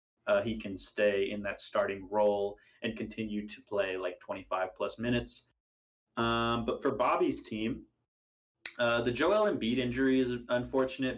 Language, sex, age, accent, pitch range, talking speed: English, male, 20-39, American, 110-125 Hz, 150 wpm